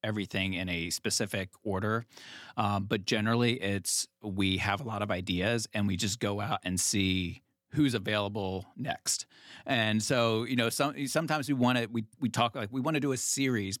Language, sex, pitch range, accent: English, male, 100-120 Hz, American